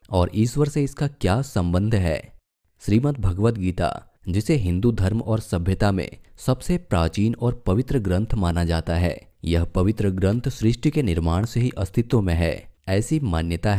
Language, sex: Hindi, male